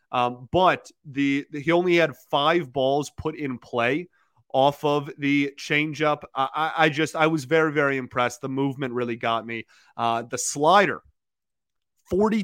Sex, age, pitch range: male, 30-49, 125-155 Hz